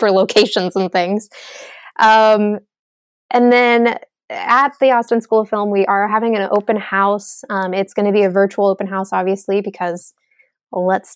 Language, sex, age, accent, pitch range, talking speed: English, female, 20-39, American, 190-220 Hz, 165 wpm